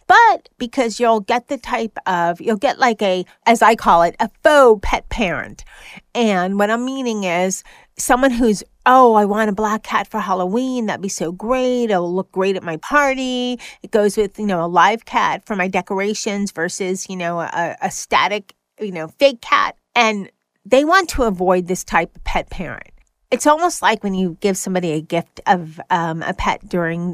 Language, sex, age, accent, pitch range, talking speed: English, female, 40-59, American, 180-230 Hz, 195 wpm